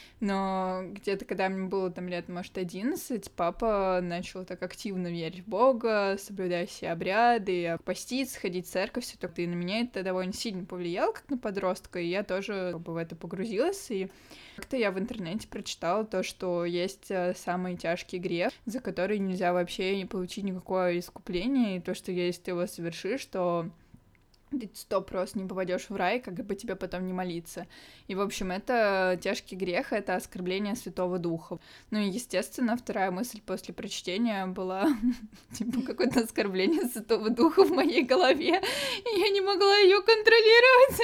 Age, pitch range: 20-39, 185-250 Hz